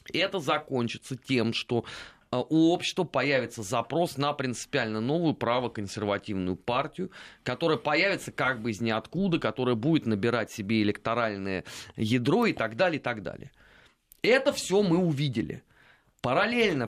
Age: 30-49